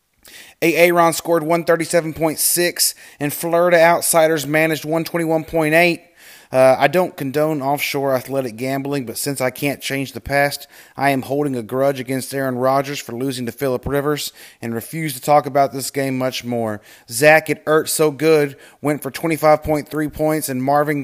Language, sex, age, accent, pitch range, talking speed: English, male, 30-49, American, 135-160 Hz, 155 wpm